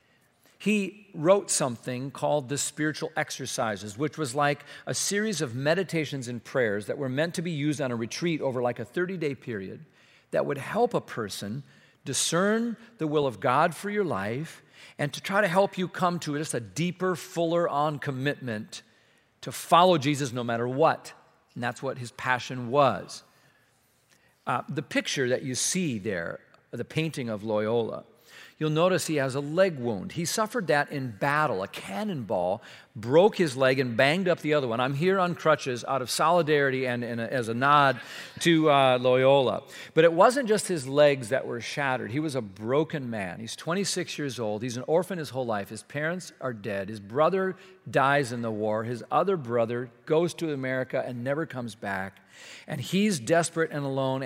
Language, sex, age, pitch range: English, male, 50-69, 125-170 Hz